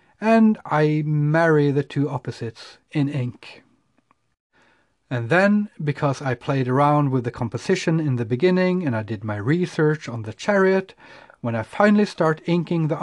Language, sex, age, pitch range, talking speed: English, male, 40-59, 120-165 Hz, 155 wpm